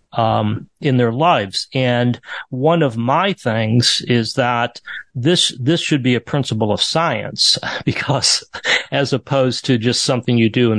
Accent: American